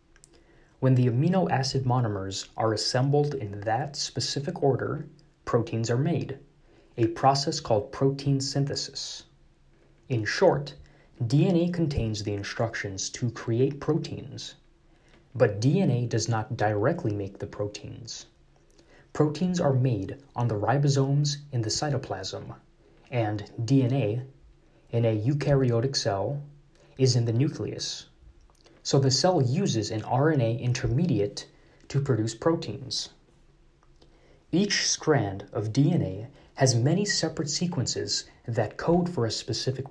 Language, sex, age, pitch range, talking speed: English, male, 20-39, 110-145 Hz, 115 wpm